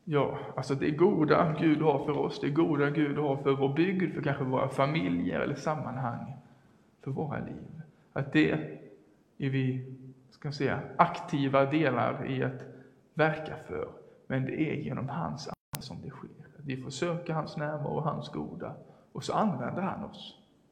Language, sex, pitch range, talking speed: English, male, 130-155 Hz, 155 wpm